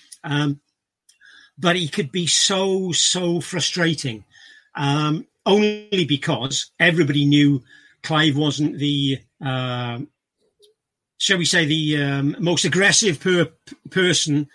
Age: 40-59